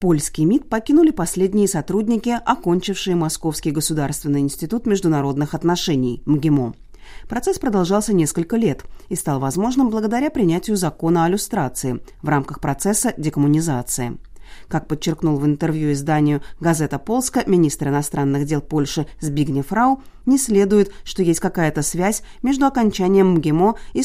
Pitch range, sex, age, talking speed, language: 150-220 Hz, female, 30-49, 125 wpm, Russian